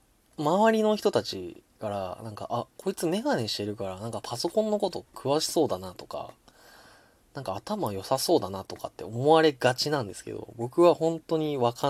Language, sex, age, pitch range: Japanese, male, 20-39, 105-145 Hz